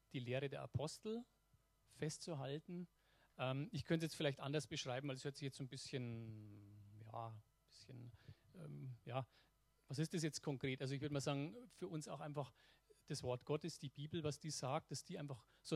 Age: 40-59